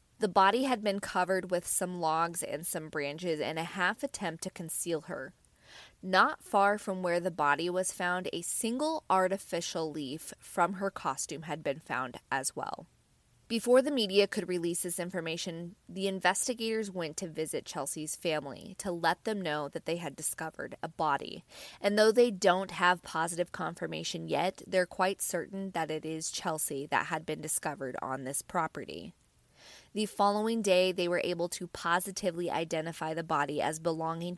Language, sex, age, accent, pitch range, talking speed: English, female, 20-39, American, 160-200 Hz, 170 wpm